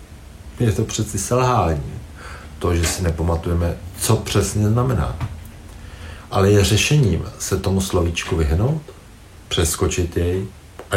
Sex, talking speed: male, 115 wpm